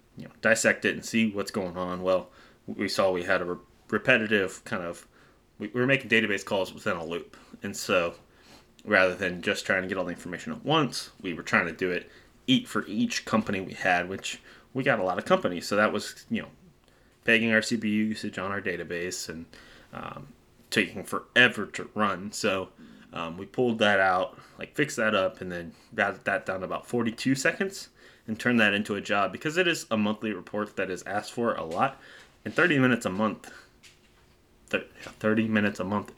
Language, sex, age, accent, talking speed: English, male, 20-39, American, 200 wpm